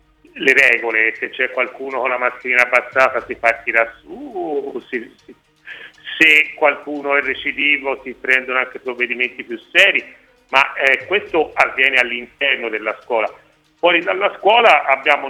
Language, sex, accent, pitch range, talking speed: Italian, male, native, 125-160 Hz, 130 wpm